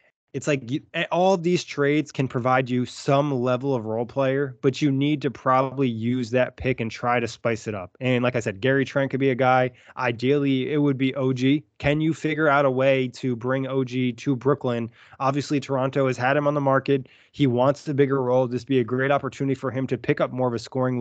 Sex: male